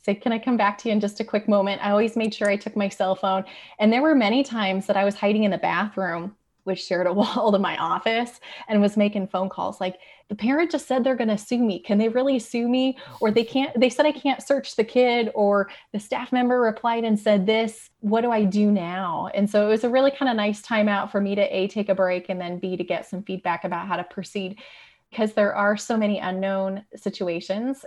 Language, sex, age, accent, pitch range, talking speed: English, female, 20-39, American, 190-230 Hz, 255 wpm